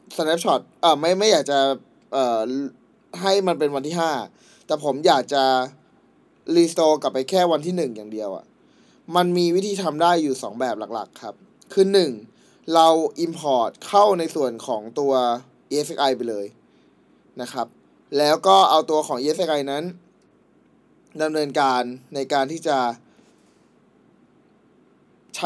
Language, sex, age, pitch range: Thai, male, 20-39, 135-180 Hz